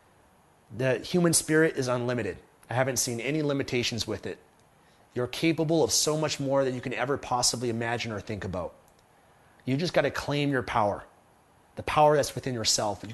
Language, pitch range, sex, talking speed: English, 120-160 Hz, male, 185 wpm